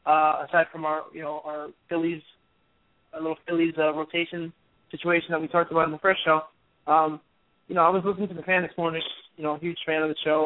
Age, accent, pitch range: 20-39, American, 160-190 Hz